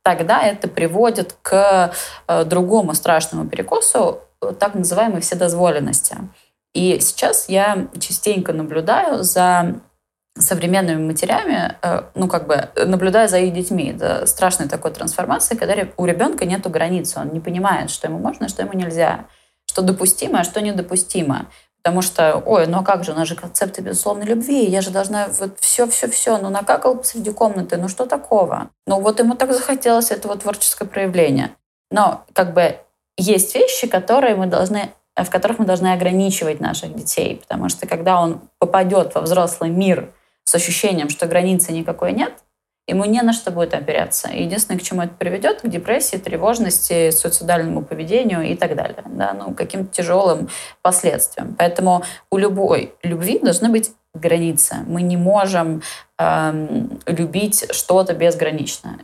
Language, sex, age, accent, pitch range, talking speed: Russian, female, 20-39, native, 170-205 Hz, 150 wpm